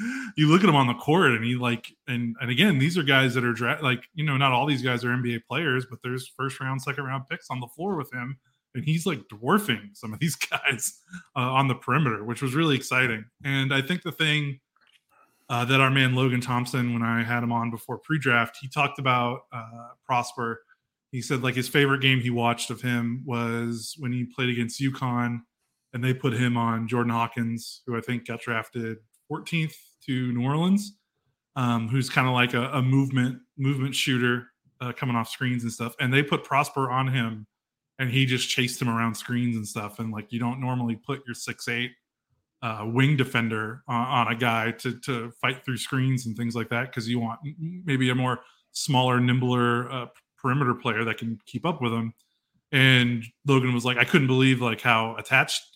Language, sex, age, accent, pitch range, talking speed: English, male, 20-39, American, 120-135 Hz, 210 wpm